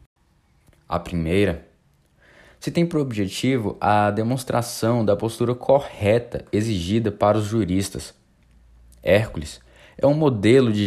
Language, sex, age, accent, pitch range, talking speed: Portuguese, male, 20-39, Brazilian, 95-130 Hz, 110 wpm